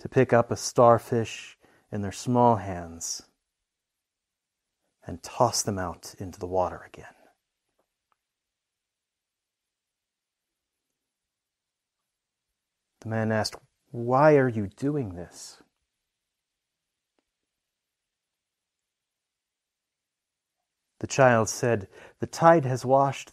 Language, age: English, 40-59